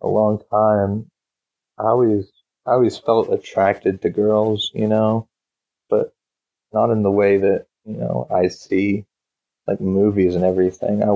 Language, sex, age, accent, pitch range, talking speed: English, male, 30-49, American, 90-105 Hz, 150 wpm